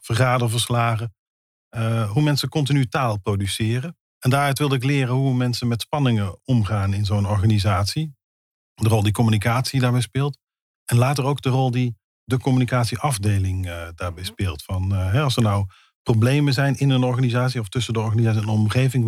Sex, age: male, 40-59